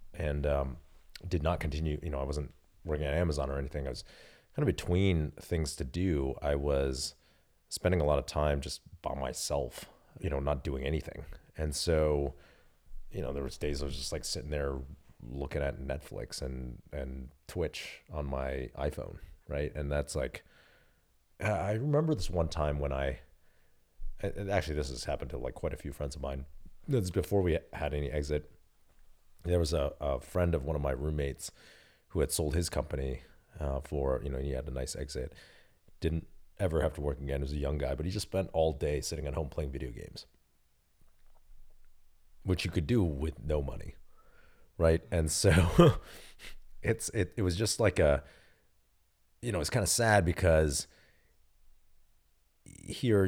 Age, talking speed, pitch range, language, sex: 30-49, 180 wpm, 70-85 Hz, English, male